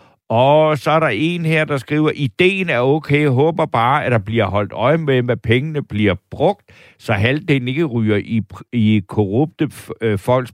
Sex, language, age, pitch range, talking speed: male, Danish, 60-79, 115-155 Hz, 180 wpm